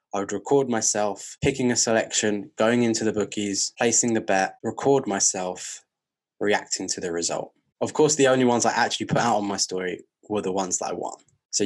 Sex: male